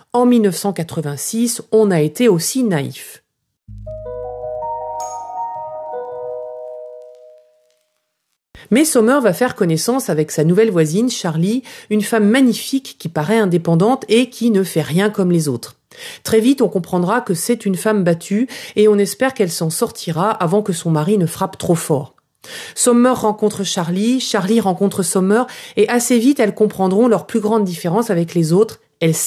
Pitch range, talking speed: 165-225 Hz, 150 wpm